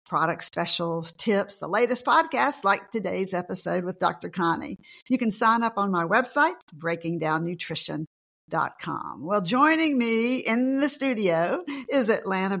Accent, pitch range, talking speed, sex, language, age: American, 175-250 Hz, 135 wpm, female, English, 50-69